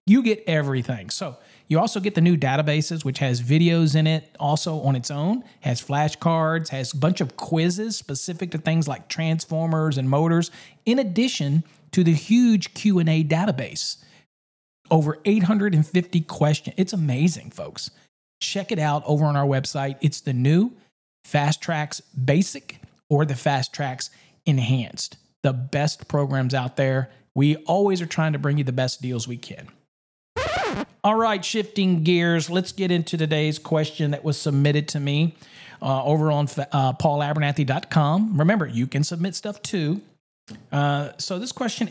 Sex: male